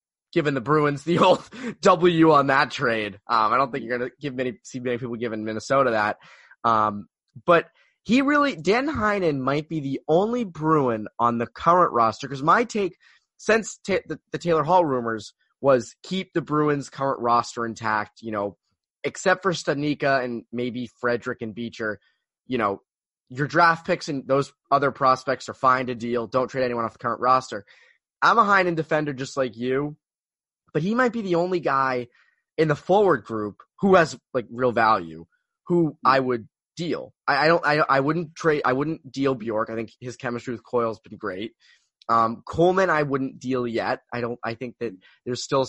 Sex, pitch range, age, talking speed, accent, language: male, 120-160 Hz, 20-39, 190 wpm, American, English